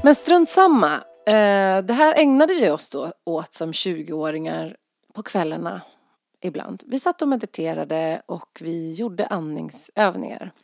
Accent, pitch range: native, 165-230 Hz